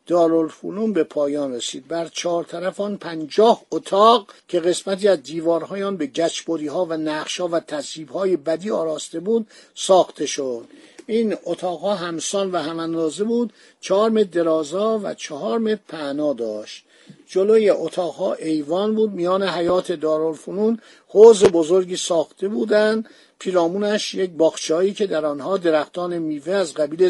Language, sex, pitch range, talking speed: Persian, male, 155-200 Hz, 135 wpm